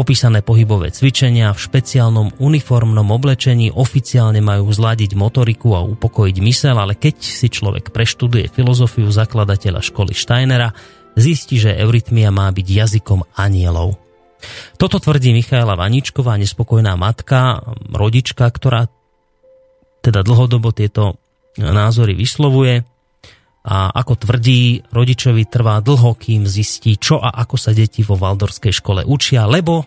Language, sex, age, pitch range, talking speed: Slovak, male, 30-49, 105-125 Hz, 125 wpm